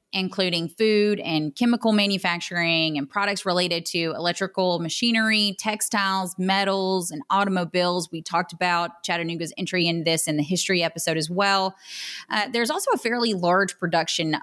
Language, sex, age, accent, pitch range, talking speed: English, female, 30-49, American, 170-210 Hz, 145 wpm